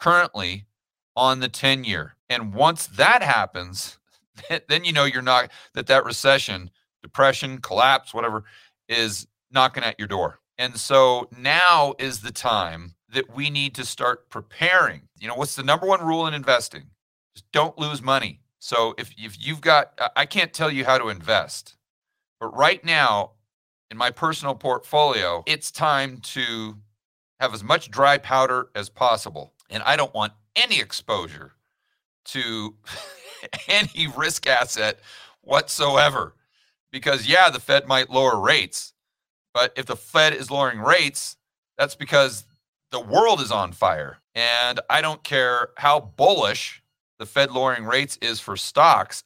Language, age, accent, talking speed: English, 40-59, American, 150 wpm